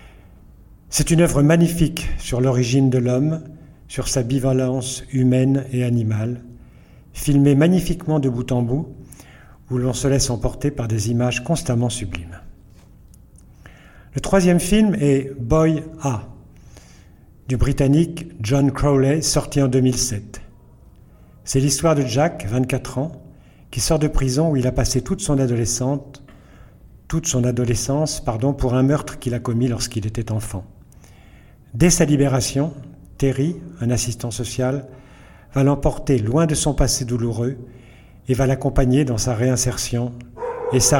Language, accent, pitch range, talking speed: French, French, 120-145 Hz, 135 wpm